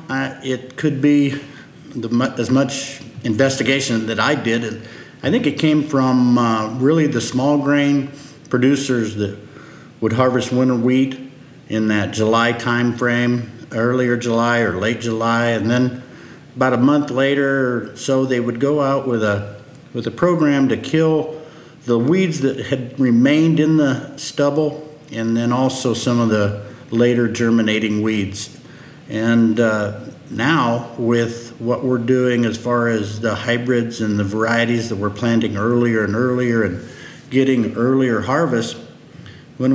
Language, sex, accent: English, male, American